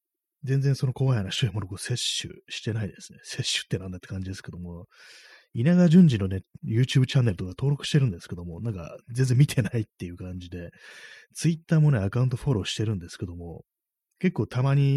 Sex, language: male, Japanese